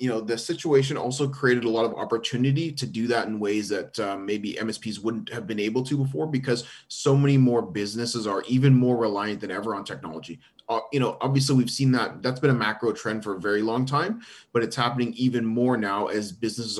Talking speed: 225 wpm